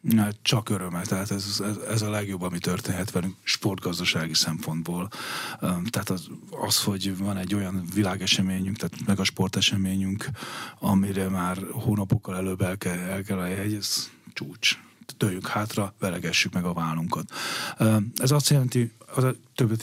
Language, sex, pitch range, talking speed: Hungarian, male, 95-120 Hz, 150 wpm